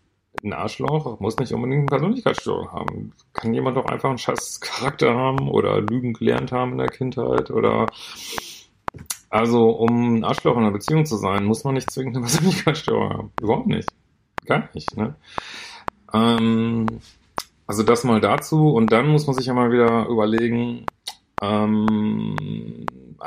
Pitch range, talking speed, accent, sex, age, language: 105-125 Hz, 150 wpm, German, male, 30-49, German